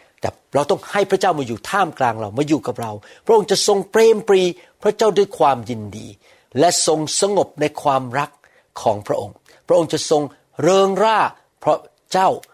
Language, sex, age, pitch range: Thai, male, 60-79, 130-170 Hz